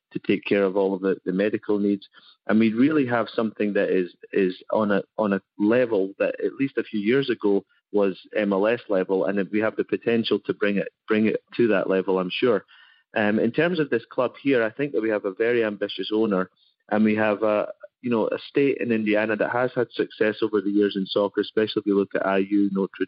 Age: 30-49